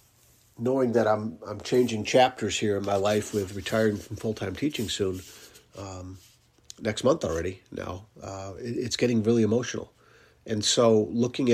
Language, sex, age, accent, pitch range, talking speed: English, male, 50-69, American, 105-120 Hz, 150 wpm